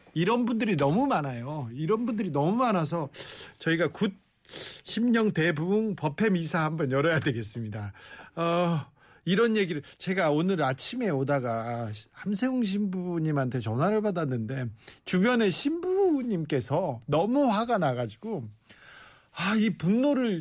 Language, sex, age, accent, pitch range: Korean, male, 40-59, native, 135-205 Hz